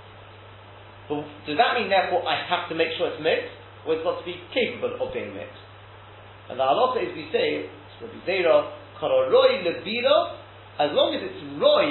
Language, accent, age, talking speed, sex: English, British, 30-49, 175 wpm, male